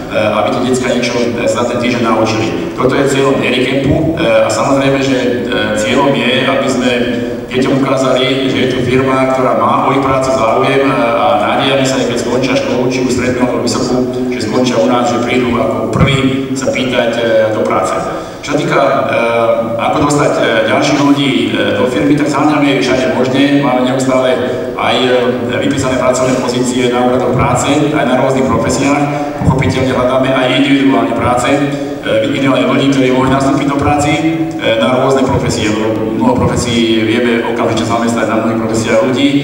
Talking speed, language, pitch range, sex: 160 wpm, Slovak, 115-135 Hz, male